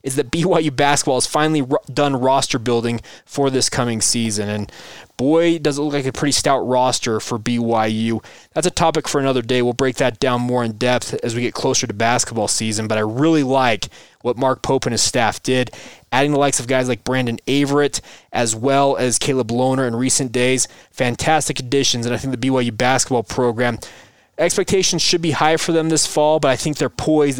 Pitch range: 120-145 Hz